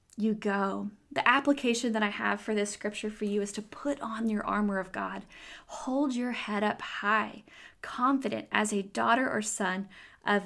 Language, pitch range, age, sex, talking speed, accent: English, 200-230 Hz, 20-39, female, 185 wpm, American